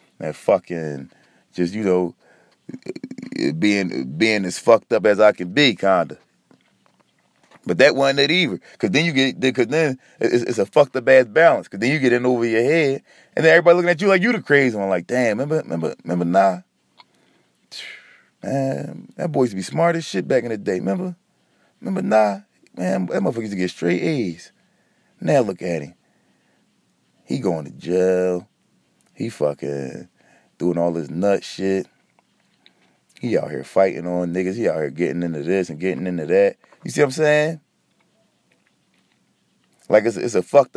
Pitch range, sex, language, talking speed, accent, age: 95-150 Hz, male, English, 185 wpm, American, 30-49